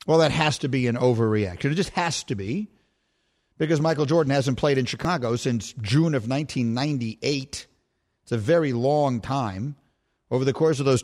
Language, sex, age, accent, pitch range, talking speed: English, male, 50-69, American, 120-155 Hz, 180 wpm